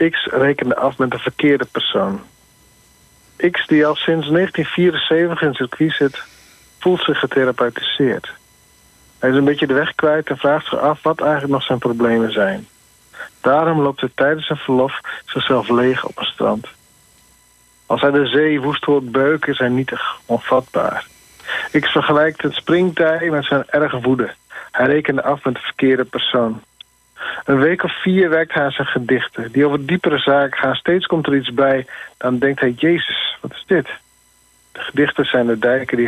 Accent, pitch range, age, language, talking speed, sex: Dutch, 130-155 Hz, 50-69, Dutch, 175 wpm, male